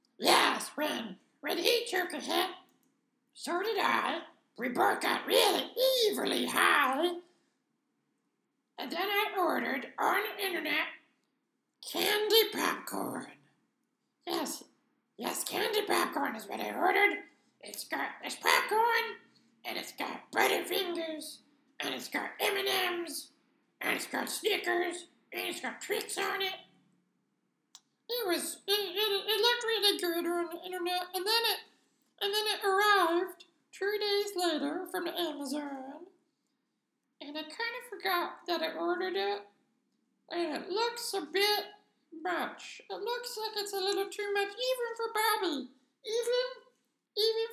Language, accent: English, American